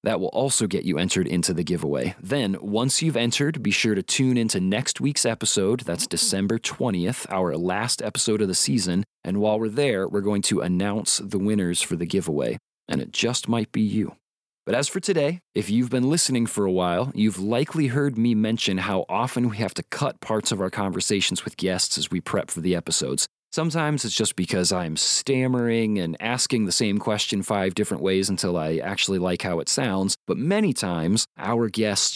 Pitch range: 95-120 Hz